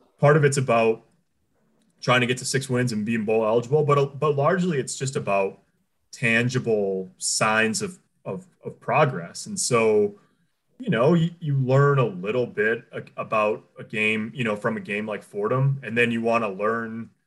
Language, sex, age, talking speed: English, male, 30-49, 180 wpm